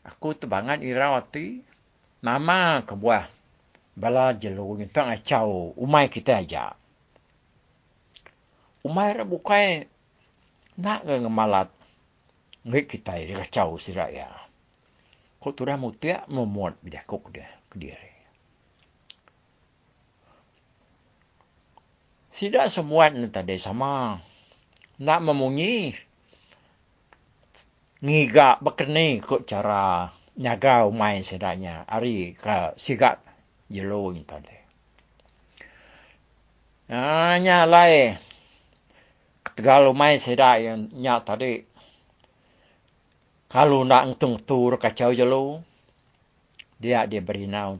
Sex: male